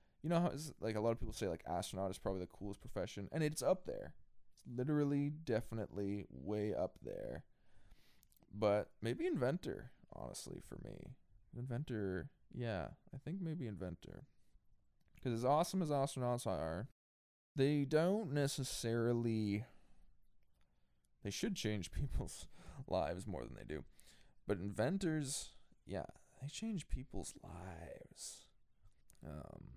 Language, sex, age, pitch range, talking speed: English, male, 20-39, 95-130 Hz, 130 wpm